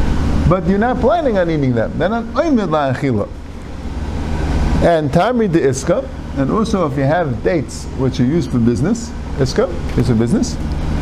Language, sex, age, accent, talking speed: English, male, 50-69, American, 165 wpm